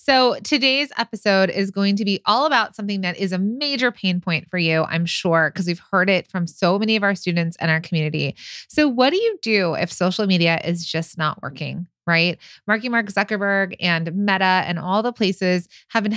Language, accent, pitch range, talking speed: English, American, 170-215 Hz, 210 wpm